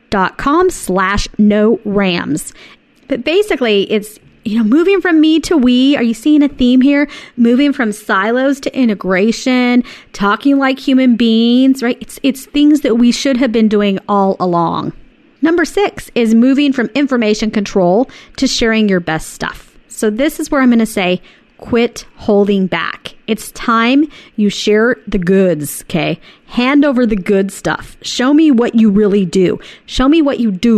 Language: English